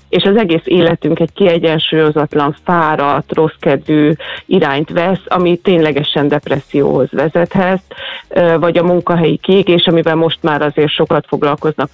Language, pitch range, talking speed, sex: Hungarian, 150-170 Hz, 120 wpm, female